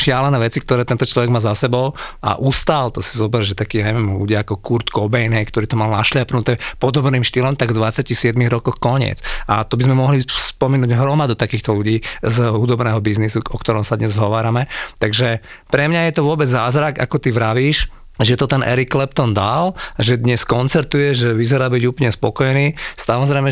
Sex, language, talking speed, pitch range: male, Slovak, 185 wpm, 110-130 Hz